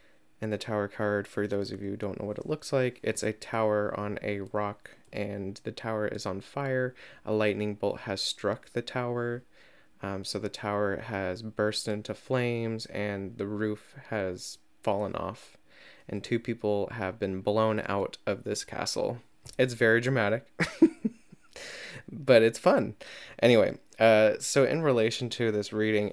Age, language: 20-39, English